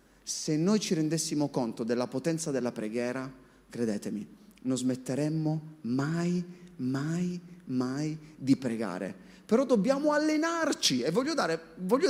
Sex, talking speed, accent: male, 115 wpm, native